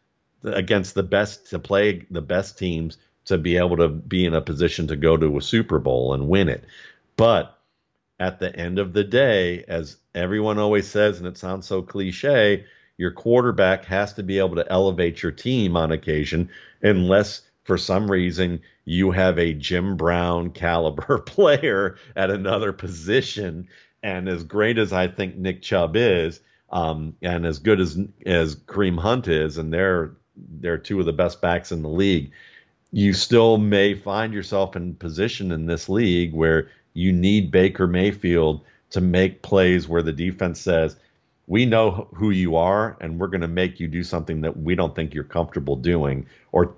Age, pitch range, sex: 50-69, 85-95 Hz, male